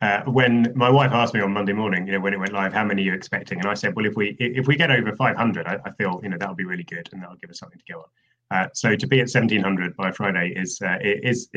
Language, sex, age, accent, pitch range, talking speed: English, male, 30-49, British, 100-135 Hz, 300 wpm